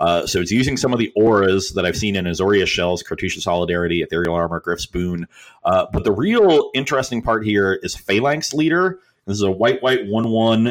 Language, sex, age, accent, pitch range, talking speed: English, male, 30-49, American, 85-115 Hz, 195 wpm